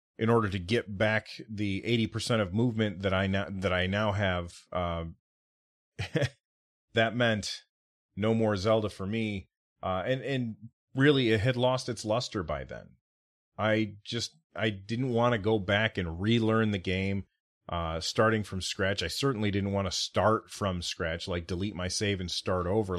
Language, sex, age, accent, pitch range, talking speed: English, male, 30-49, American, 95-125 Hz, 170 wpm